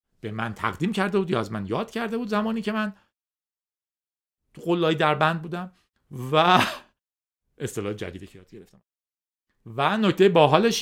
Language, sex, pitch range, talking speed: Persian, male, 115-195 Hz, 140 wpm